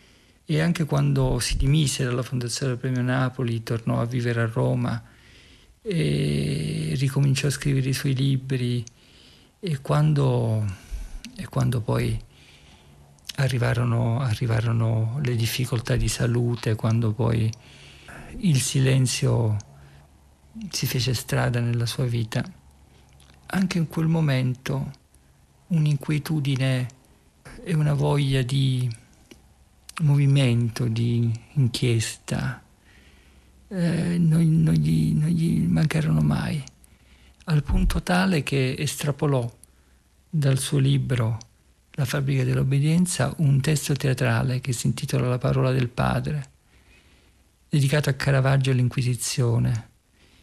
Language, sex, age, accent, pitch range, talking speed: Italian, male, 50-69, native, 110-140 Hz, 105 wpm